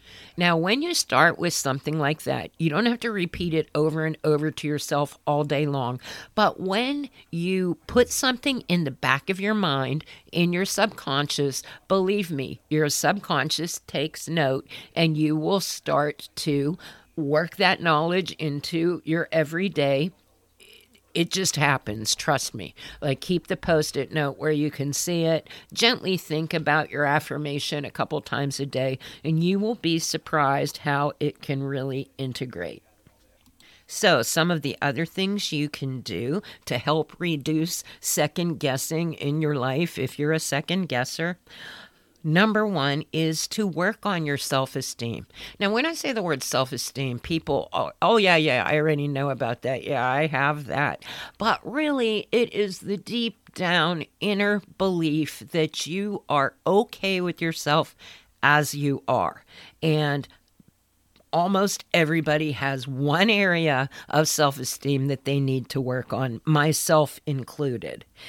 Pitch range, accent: 140-175 Hz, American